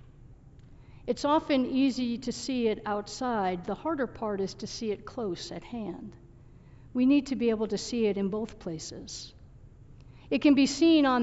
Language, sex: English, female